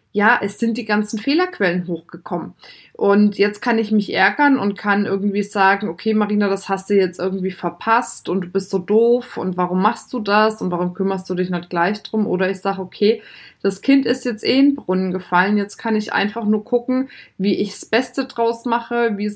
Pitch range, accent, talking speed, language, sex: 190-225 Hz, German, 215 wpm, German, female